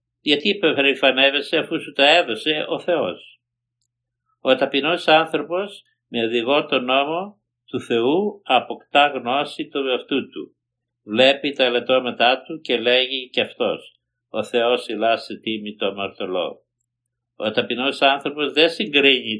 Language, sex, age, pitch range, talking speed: Greek, male, 60-79, 115-140 Hz, 125 wpm